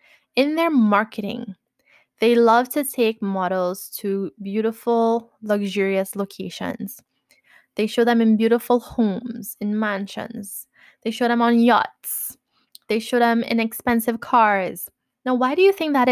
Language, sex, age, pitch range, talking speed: English, female, 10-29, 210-260 Hz, 140 wpm